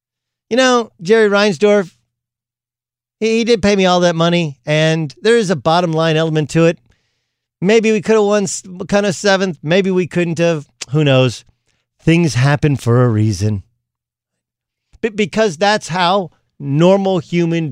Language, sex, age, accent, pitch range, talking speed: English, male, 50-69, American, 120-205 Hz, 150 wpm